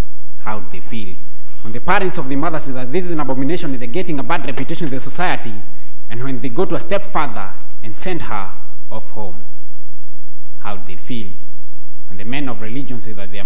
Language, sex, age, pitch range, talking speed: English, male, 30-49, 100-125 Hz, 210 wpm